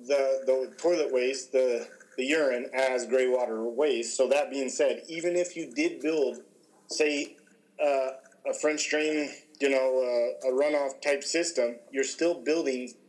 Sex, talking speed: male, 160 wpm